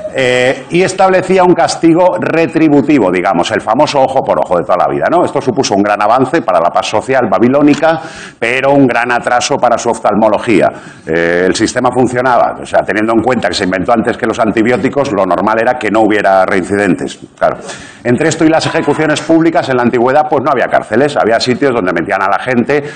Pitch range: 110-150 Hz